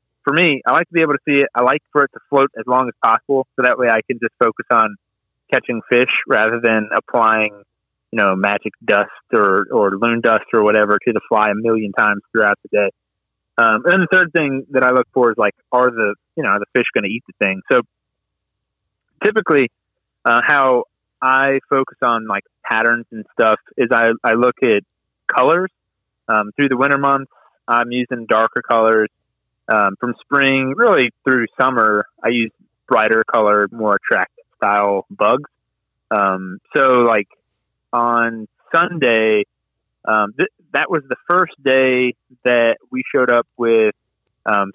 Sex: male